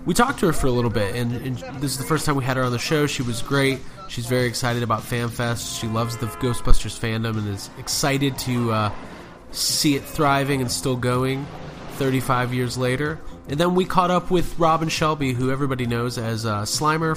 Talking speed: 215 wpm